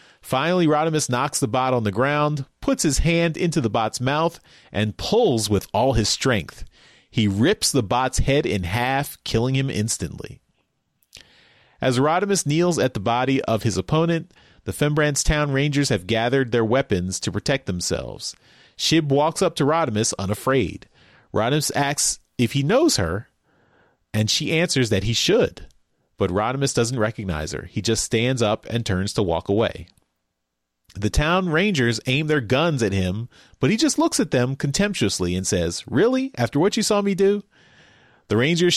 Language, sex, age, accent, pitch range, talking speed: English, male, 30-49, American, 100-140 Hz, 170 wpm